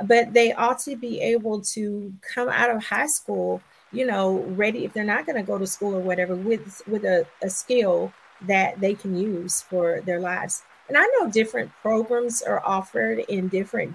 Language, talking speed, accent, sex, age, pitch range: English, 195 wpm, American, female, 40-59, 190-235 Hz